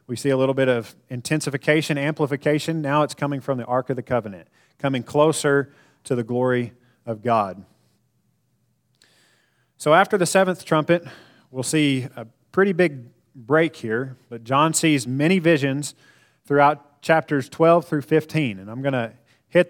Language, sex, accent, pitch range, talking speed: English, male, American, 130-160 Hz, 155 wpm